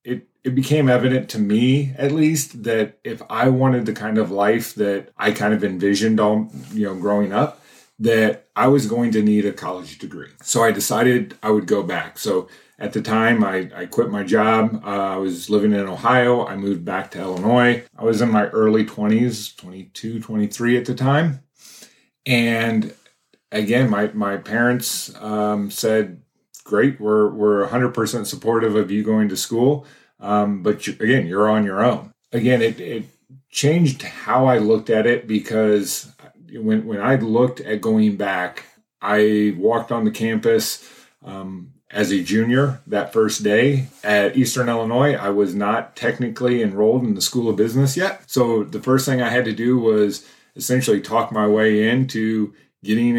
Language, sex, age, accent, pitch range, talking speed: English, male, 30-49, American, 105-125 Hz, 175 wpm